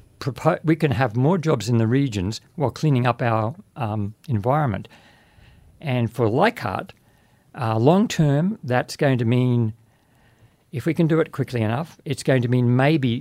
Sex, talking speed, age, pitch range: male, 160 wpm, 60-79, 110-135 Hz